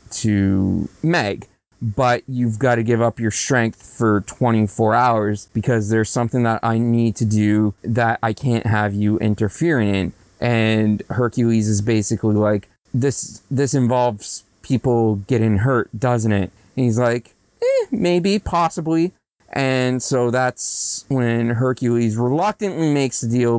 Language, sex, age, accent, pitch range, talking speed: English, male, 30-49, American, 110-140 Hz, 140 wpm